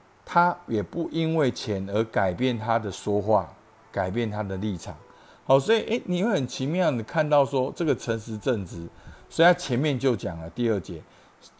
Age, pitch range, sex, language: 50-69, 95-140 Hz, male, Chinese